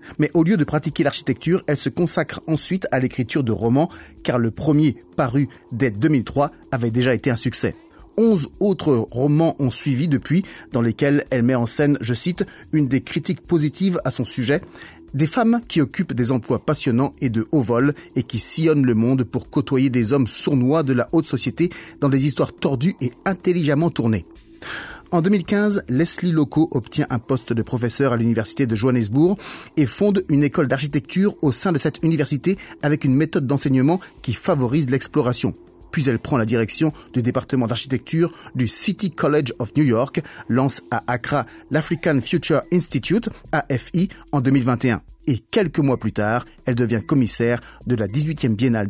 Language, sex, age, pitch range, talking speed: French, male, 30-49, 125-160 Hz, 180 wpm